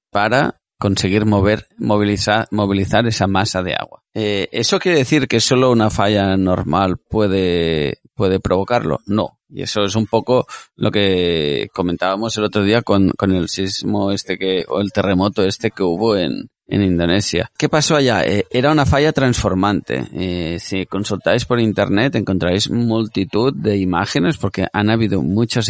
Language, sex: Spanish, male